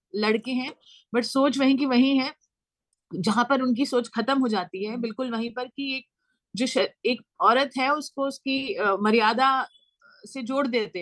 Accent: native